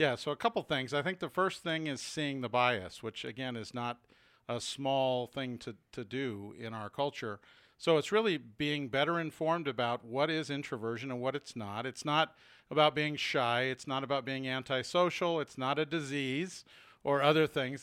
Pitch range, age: 125-155 Hz, 50-69